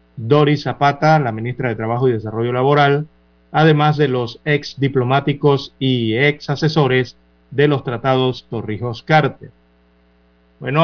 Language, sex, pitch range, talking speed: Spanish, male, 110-145 Hz, 110 wpm